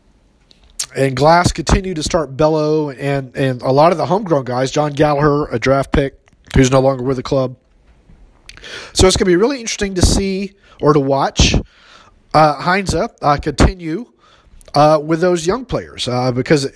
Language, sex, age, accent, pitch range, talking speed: English, male, 30-49, American, 135-175 Hz, 170 wpm